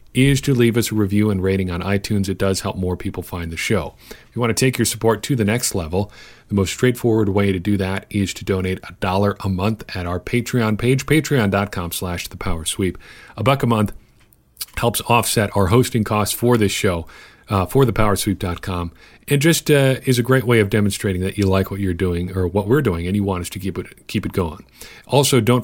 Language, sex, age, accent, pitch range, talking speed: English, male, 40-59, American, 95-115 Hz, 225 wpm